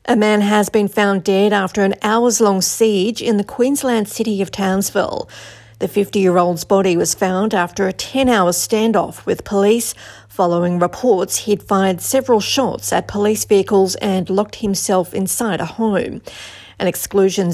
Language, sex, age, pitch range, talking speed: English, female, 40-59, 185-220 Hz, 150 wpm